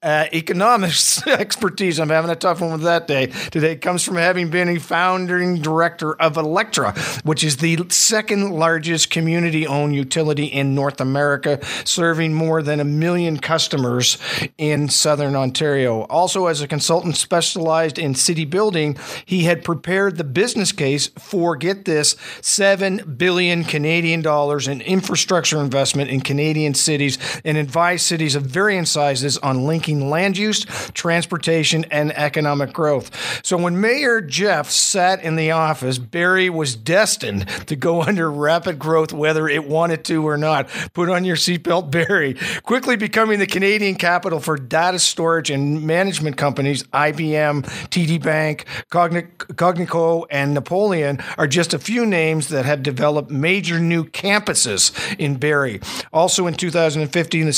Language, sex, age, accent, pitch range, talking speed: English, male, 50-69, American, 150-175 Hz, 150 wpm